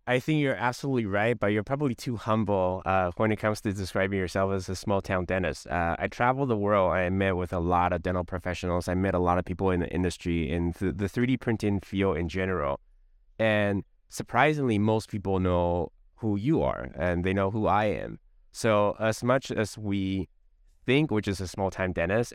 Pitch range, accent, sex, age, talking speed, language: 90-105 Hz, American, male, 20-39, 200 wpm, English